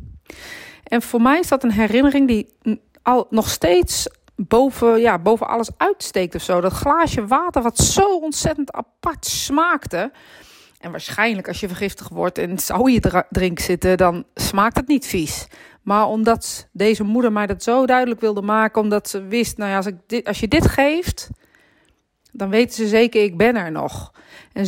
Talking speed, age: 175 wpm, 40-59